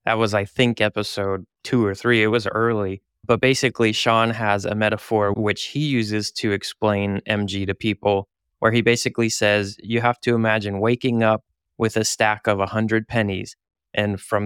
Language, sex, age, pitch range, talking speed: English, male, 20-39, 100-115 Hz, 180 wpm